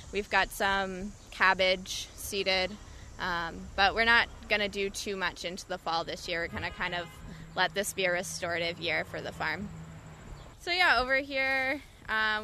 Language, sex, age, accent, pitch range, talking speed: English, female, 20-39, American, 195-240 Hz, 185 wpm